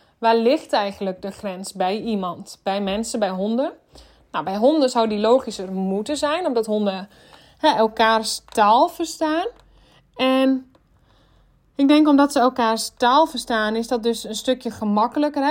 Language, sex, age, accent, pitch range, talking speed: Dutch, female, 20-39, Dutch, 225-280 Hz, 145 wpm